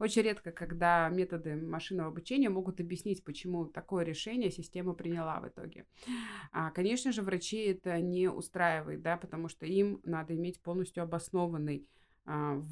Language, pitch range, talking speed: Russian, 165-195 Hz, 130 wpm